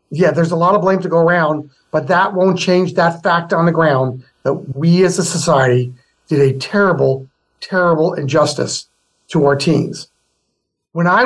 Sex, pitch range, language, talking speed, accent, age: male, 150-195 Hz, English, 175 wpm, American, 50-69